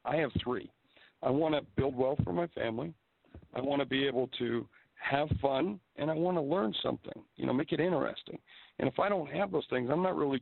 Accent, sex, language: American, male, English